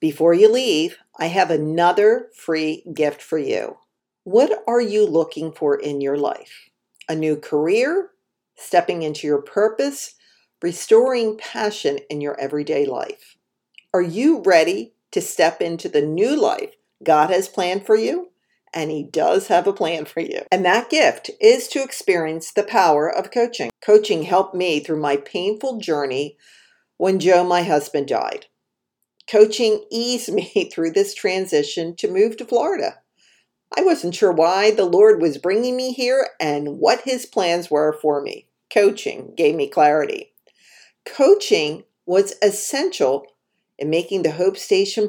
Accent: American